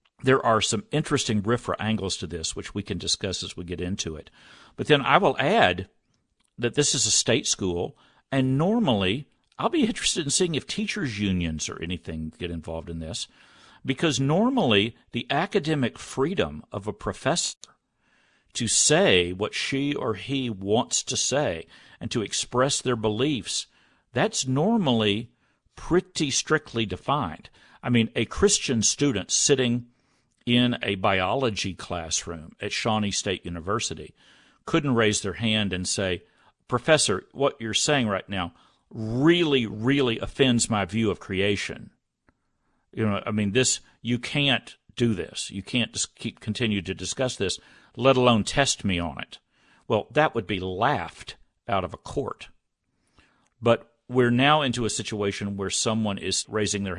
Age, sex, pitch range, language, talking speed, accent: 50-69, male, 100-135 Hz, English, 155 wpm, American